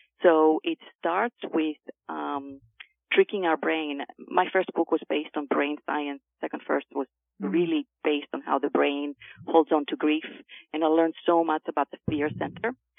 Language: English